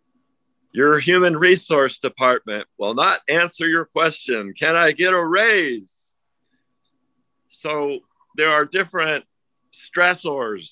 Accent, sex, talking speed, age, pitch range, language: American, male, 105 wpm, 50-69, 110-175 Hz, English